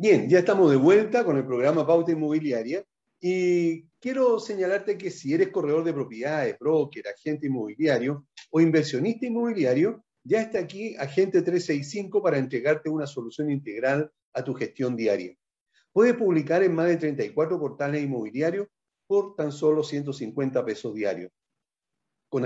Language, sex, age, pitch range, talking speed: Spanish, male, 40-59, 140-190 Hz, 145 wpm